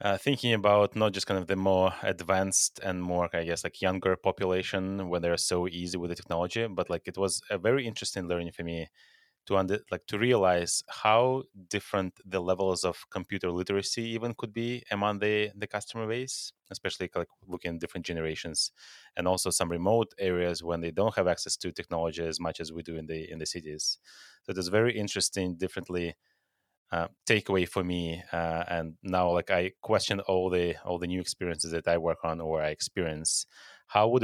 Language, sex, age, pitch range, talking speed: English, male, 30-49, 85-100 Hz, 200 wpm